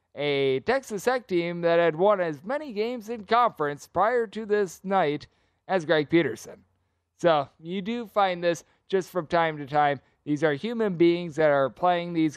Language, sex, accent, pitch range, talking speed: English, male, American, 150-205 Hz, 180 wpm